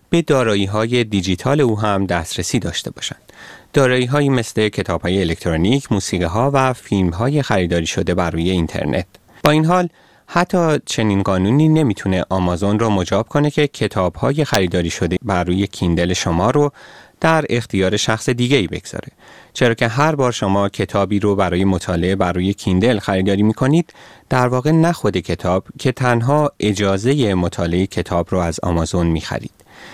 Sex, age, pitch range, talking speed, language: male, 30-49, 90-125 Hz, 145 wpm, Persian